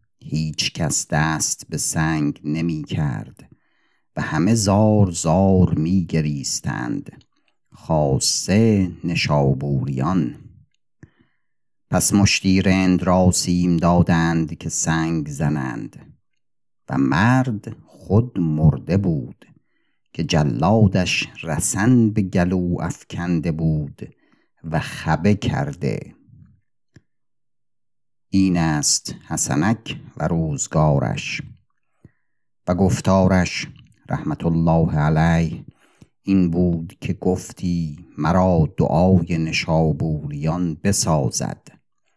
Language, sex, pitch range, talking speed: Persian, male, 80-100 Hz, 80 wpm